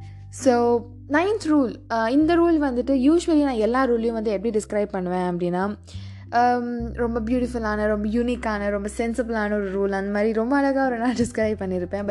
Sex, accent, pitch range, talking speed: female, native, 200-260 Hz, 155 wpm